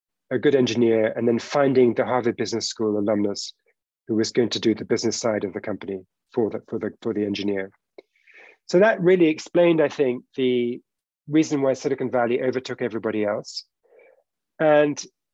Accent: British